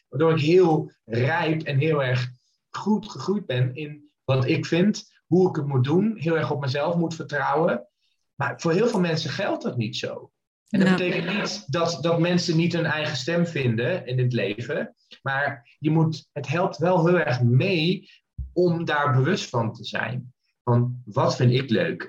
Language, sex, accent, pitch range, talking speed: Dutch, male, Dutch, 125-165 Hz, 185 wpm